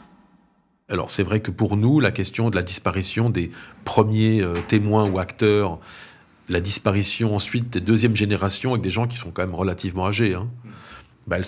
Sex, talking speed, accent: male, 185 wpm, French